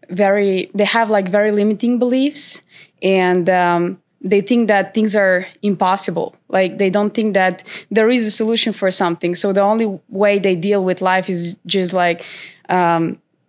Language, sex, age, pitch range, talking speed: English, female, 20-39, 180-210 Hz, 170 wpm